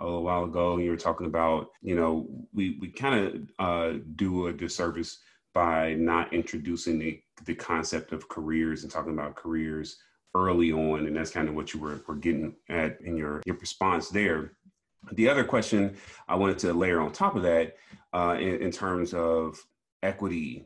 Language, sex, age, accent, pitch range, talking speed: English, male, 30-49, American, 80-90 Hz, 185 wpm